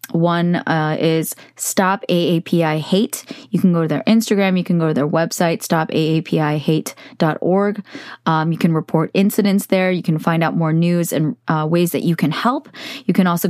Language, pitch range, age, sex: English, 160-190 Hz, 20-39, female